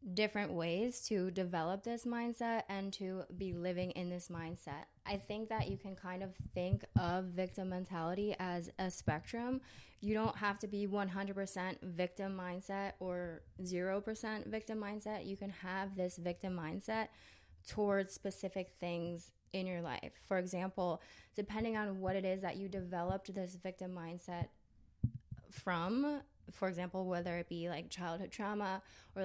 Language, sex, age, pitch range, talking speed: English, female, 20-39, 175-200 Hz, 150 wpm